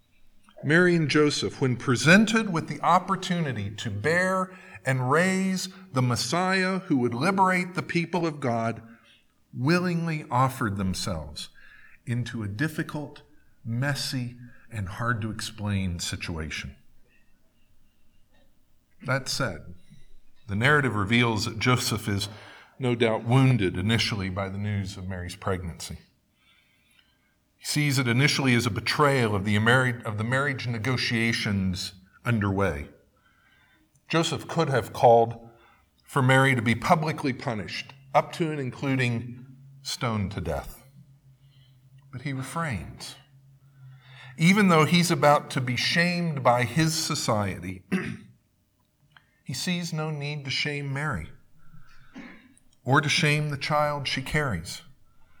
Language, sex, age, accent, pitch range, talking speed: English, male, 50-69, American, 110-150 Hz, 115 wpm